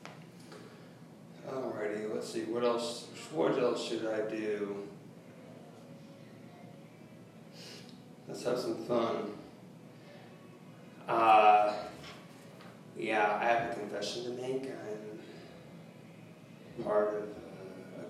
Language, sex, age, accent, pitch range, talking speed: English, male, 30-49, American, 110-140 Hz, 85 wpm